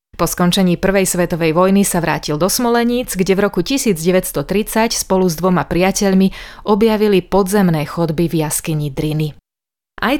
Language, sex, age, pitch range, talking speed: Slovak, female, 30-49, 170-200 Hz, 140 wpm